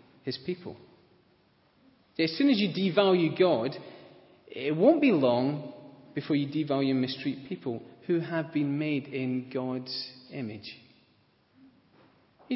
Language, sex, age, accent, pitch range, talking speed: English, male, 30-49, British, 125-185 Hz, 125 wpm